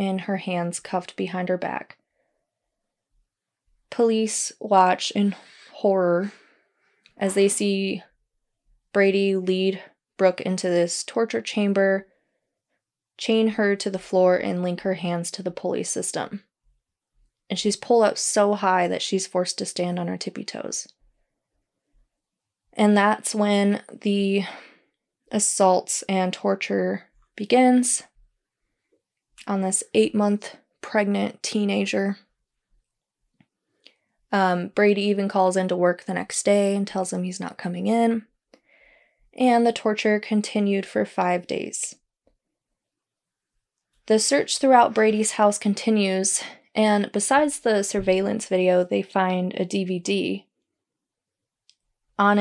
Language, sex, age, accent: English, female, 20-39, American